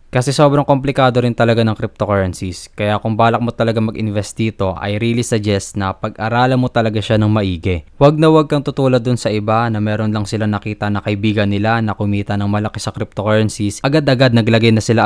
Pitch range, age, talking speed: 105-120 Hz, 20-39, 200 wpm